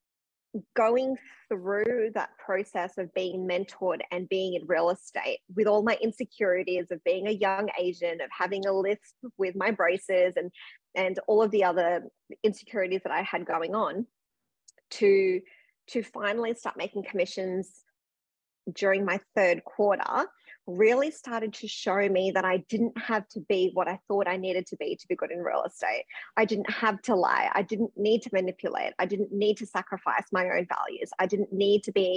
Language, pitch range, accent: English, 185-225 Hz, Australian